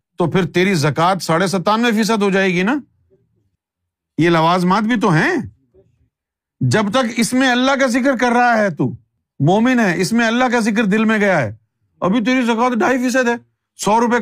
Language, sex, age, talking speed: Urdu, male, 50-69, 190 wpm